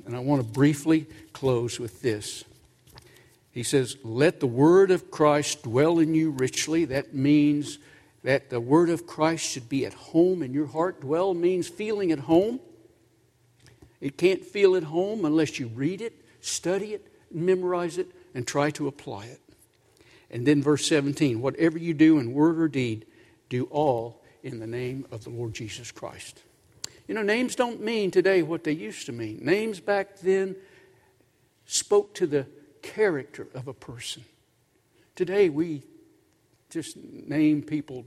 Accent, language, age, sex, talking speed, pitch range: American, English, 60-79, male, 160 wpm, 130-180 Hz